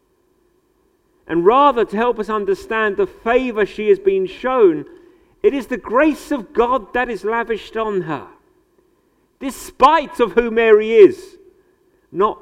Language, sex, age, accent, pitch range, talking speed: English, male, 50-69, British, 225-360 Hz, 140 wpm